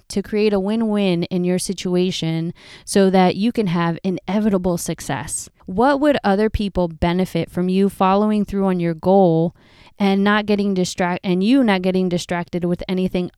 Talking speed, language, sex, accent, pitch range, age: 165 wpm, English, female, American, 175-215 Hz, 20-39